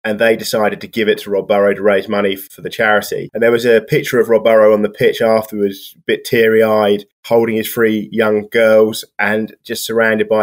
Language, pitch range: English, 105-115 Hz